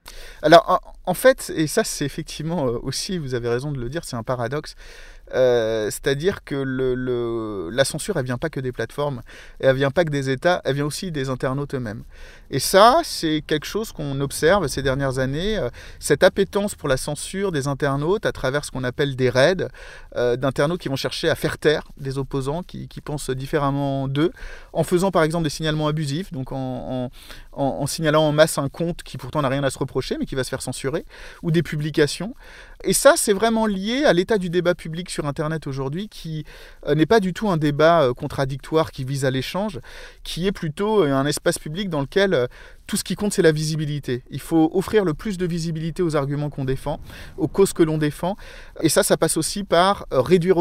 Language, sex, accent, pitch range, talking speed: French, male, French, 135-175 Hz, 210 wpm